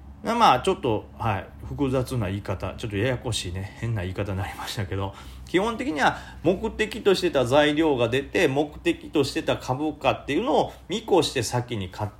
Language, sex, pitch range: Japanese, male, 105-175 Hz